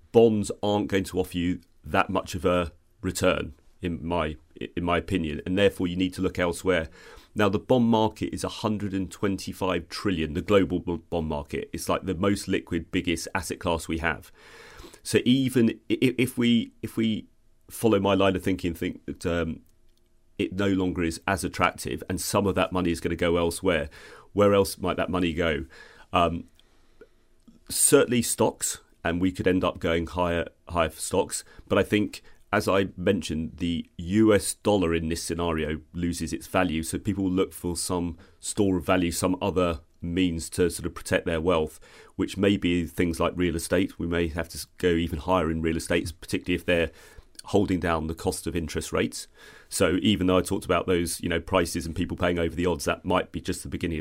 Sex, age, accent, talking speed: male, 30-49, British, 200 wpm